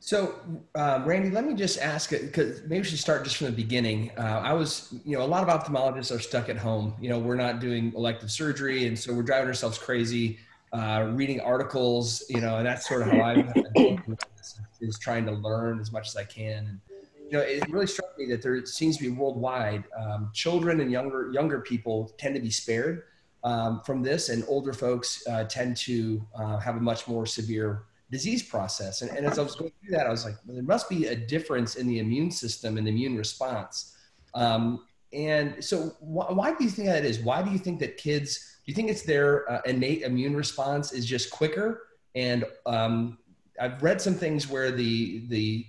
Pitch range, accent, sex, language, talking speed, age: 115-145 Hz, American, male, English, 220 wpm, 30-49